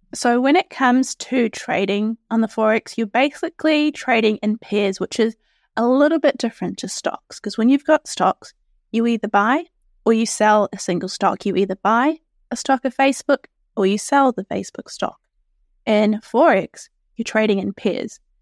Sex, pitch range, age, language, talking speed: female, 210-265 Hz, 20-39, English, 180 wpm